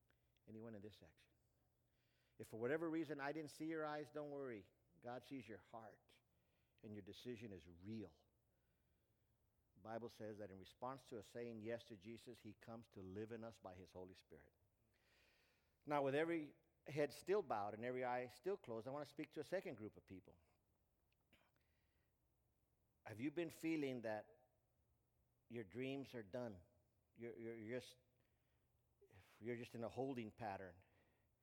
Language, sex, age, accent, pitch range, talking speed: English, male, 50-69, American, 105-125 Hz, 160 wpm